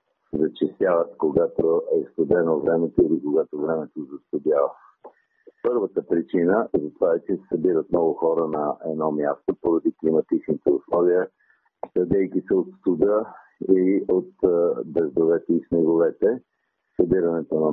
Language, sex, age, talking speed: Bulgarian, male, 50-69, 125 wpm